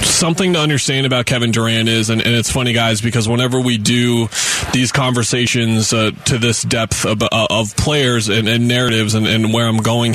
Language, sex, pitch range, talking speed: English, male, 115-130 Hz, 195 wpm